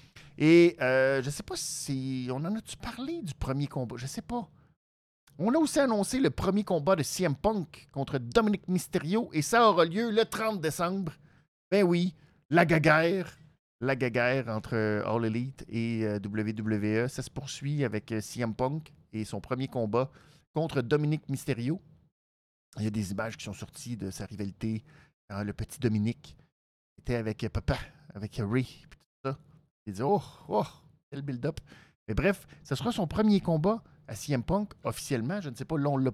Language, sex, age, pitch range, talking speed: French, male, 50-69, 120-170 Hz, 175 wpm